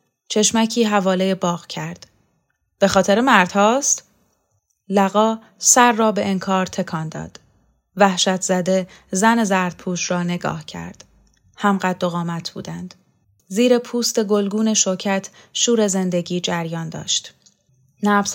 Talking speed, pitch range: 115 wpm, 175-215 Hz